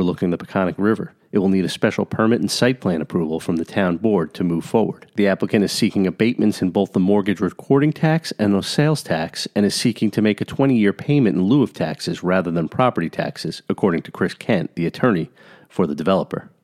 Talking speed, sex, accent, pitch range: 220 wpm, male, American, 95-110 Hz